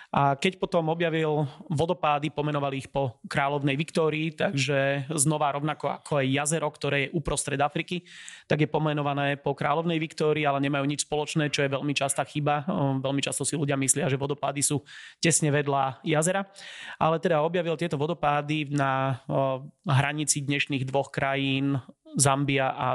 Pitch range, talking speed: 140-155 Hz, 150 wpm